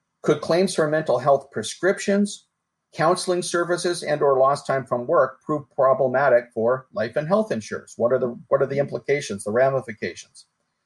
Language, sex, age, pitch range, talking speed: English, male, 40-59, 120-165 Hz, 155 wpm